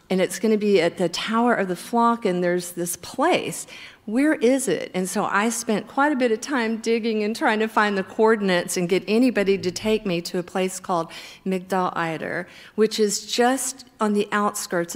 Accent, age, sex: American, 50-69, female